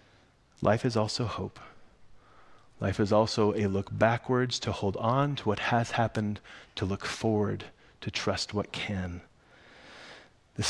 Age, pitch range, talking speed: 30-49, 100-120 Hz, 140 wpm